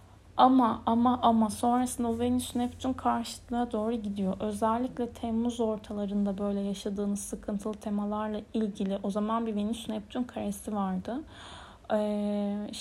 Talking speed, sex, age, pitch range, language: 115 wpm, female, 10-29, 210-245 Hz, Turkish